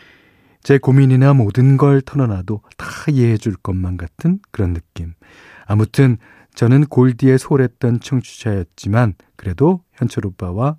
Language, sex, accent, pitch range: Korean, male, native, 100-140 Hz